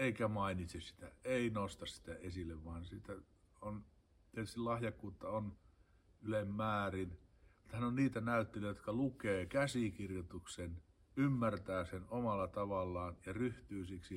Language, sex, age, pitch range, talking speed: Finnish, male, 50-69, 90-115 Hz, 120 wpm